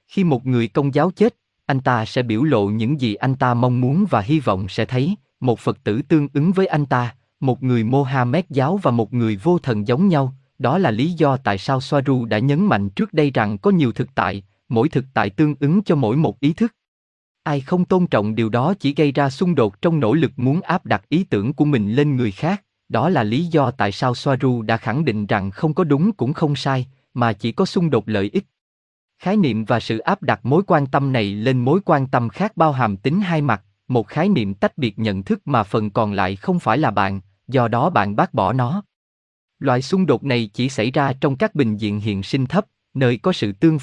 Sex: male